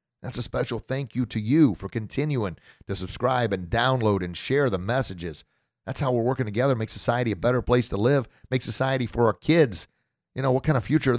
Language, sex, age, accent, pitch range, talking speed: English, male, 40-59, American, 100-130 Hz, 220 wpm